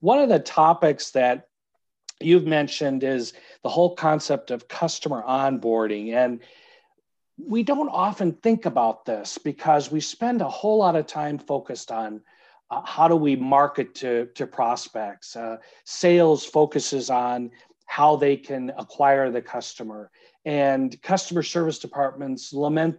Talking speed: 140 wpm